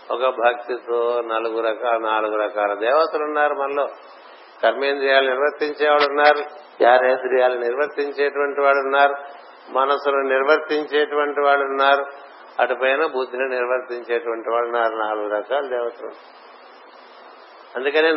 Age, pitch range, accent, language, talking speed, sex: 60-79, 125-150 Hz, native, Telugu, 80 wpm, male